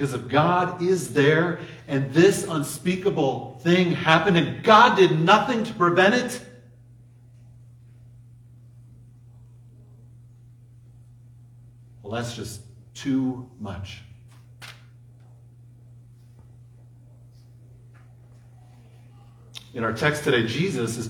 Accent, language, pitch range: American, English, 115-130 Hz